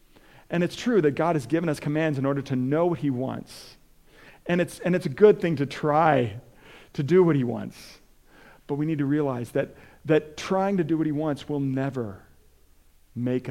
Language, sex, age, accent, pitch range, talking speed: English, male, 40-59, American, 125-160 Hz, 205 wpm